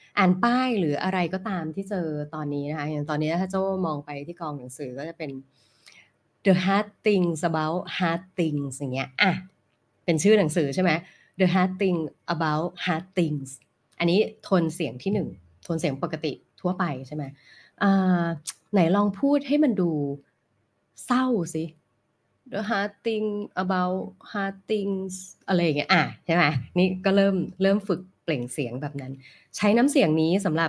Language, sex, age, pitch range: Thai, female, 20-39, 155-205 Hz